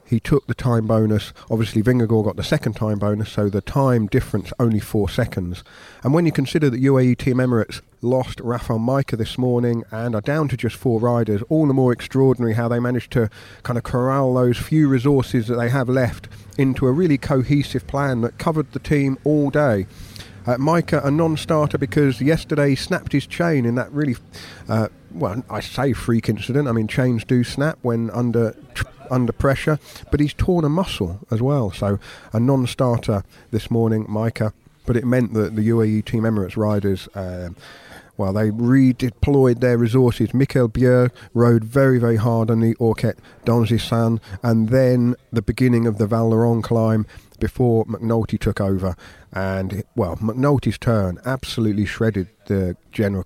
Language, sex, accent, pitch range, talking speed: English, male, British, 110-130 Hz, 175 wpm